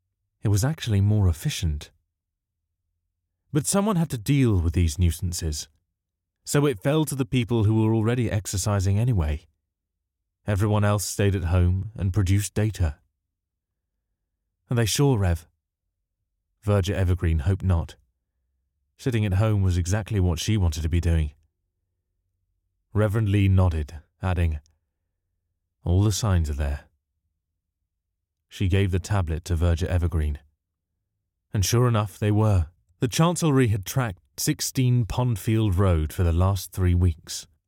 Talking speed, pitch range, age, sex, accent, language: 135 wpm, 85-110 Hz, 30-49, male, British, English